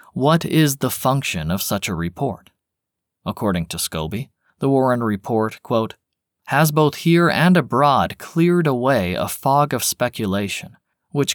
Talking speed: 135 wpm